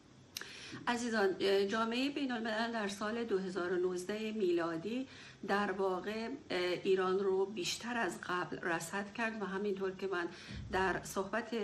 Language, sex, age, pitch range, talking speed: Persian, female, 50-69, 170-200 Hz, 120 wpm